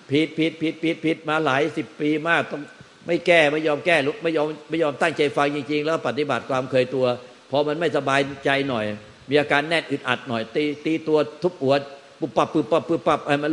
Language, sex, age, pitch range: Thai, male, 60-79, 140-165 Hz